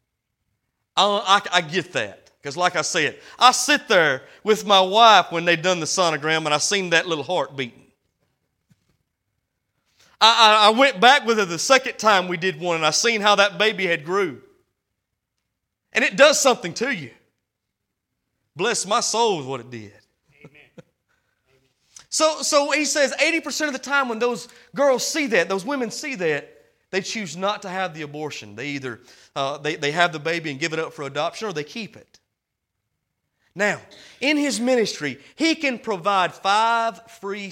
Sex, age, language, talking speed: male, 30-49, English, 180 wpm